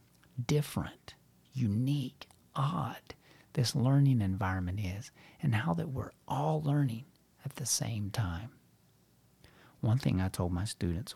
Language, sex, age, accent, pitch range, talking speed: English, male, 50-69, American, 95-135 Hz, 125 wpm